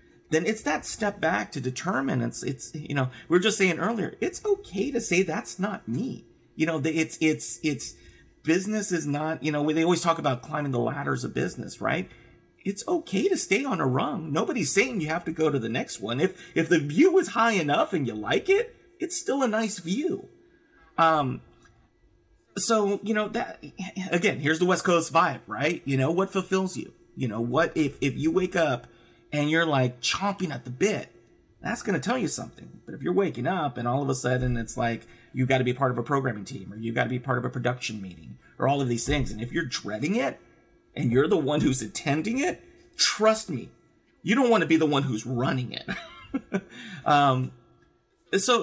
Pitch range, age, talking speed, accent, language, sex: 125-190 Hz, 30-49, 220 wpm, American, English, male